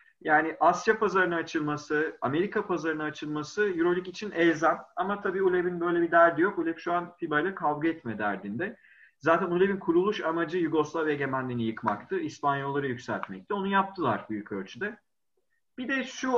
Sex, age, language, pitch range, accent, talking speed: male, 40-59, Turkish, 120-175 Hz, native, 145 wpm